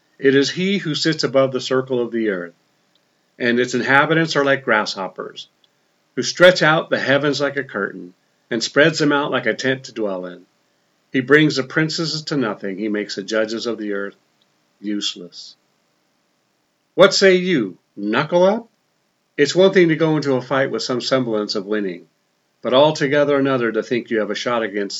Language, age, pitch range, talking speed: English, 50-69, 110-140 Hz, 180 wpm